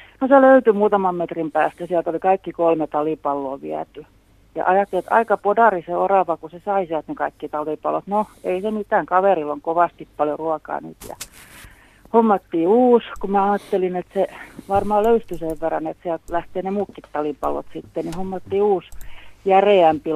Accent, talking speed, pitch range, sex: native, 175 wpm, 160-195 Hz, female